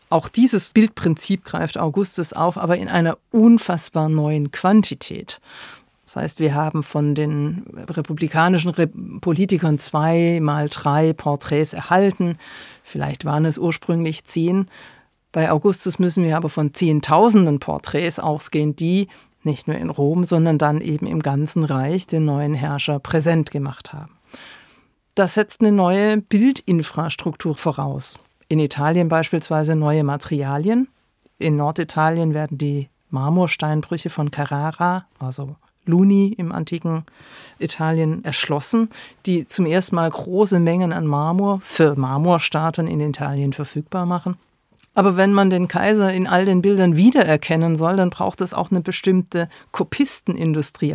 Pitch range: 150-185 Hz